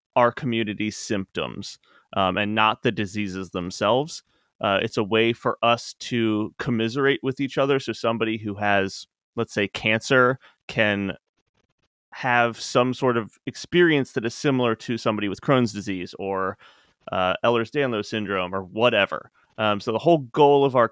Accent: American